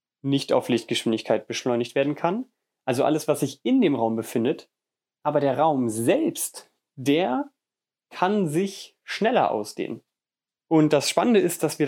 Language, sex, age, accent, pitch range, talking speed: German, male, 30-49, German, 135-180 Hz, 145 wpm